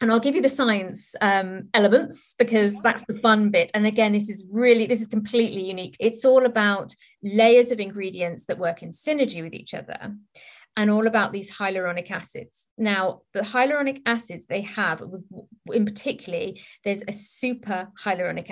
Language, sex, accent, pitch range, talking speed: English, female, British, 195-235 Hz, 170 wpm